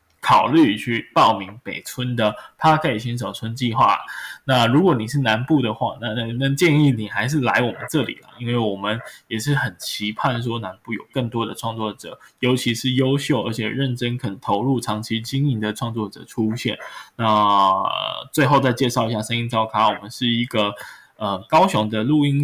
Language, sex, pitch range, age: Chinese, male, 105-130 Hz, 10-29